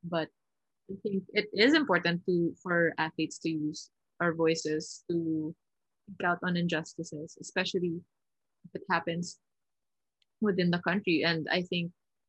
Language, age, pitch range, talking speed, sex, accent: Filipino, 20-39, 160-185 Hz, 135 wpm, female, native